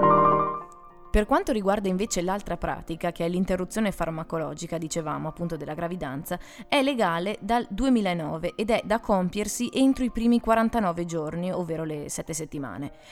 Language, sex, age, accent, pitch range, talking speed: Italian, female, 20-39, native, 165-235 Hz, 140 wpm